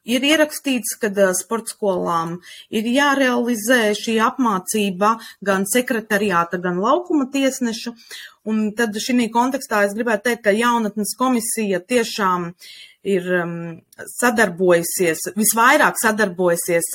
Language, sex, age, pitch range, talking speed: English, female, 20-39, 175-230 Hz, 100 wpm